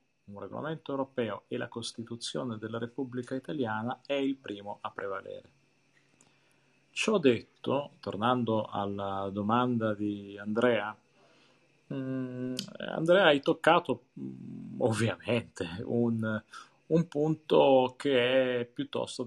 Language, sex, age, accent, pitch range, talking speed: Italian, male, 40-59, native, 105-135 Hz, 95 wpm